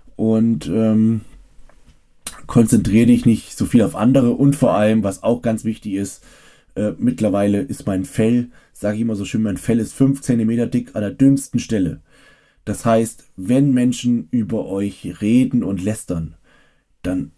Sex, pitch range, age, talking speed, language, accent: male, 105-125 Hz, 20-39, 160 wpm, German, German